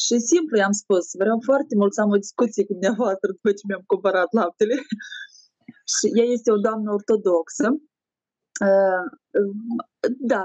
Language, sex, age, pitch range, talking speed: Romanian, female, 20-39, 195-250 Hz, 145 wpm